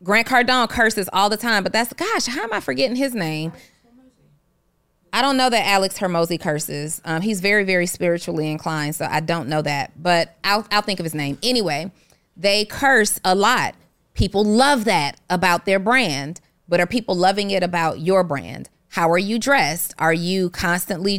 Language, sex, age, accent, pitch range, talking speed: English, female, 30-49, American, 170-220 Hz, 185 wpm